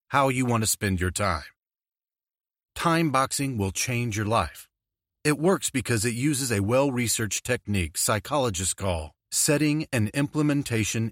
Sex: male